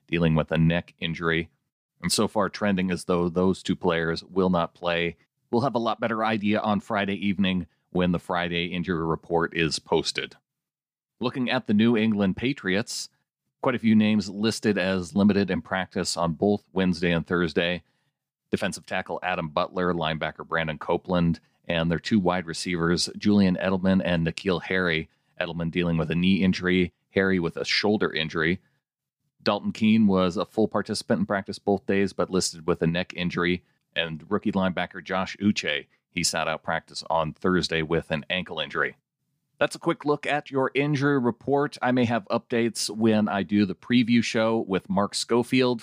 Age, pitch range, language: 40-59, 90-115 Hz, English